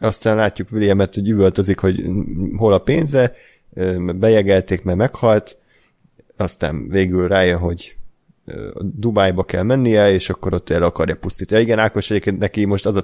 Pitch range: 95-110 Hz